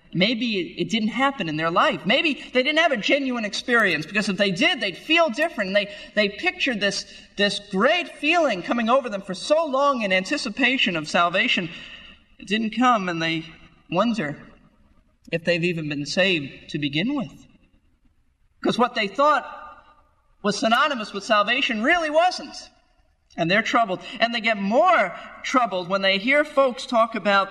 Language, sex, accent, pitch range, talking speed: English, male, American, 180-270 Hz, 165 wpm